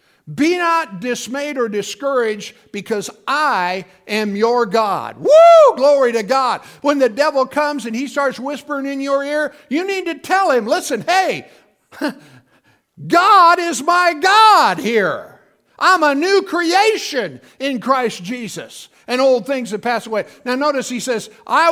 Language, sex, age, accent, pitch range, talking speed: English, male, 50-69, American, 220-325 Hz, 150 wpm